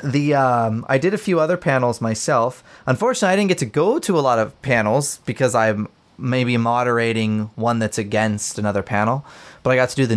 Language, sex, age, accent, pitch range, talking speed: English, male, 20-39, American, 105-135 Hz, 205 wpm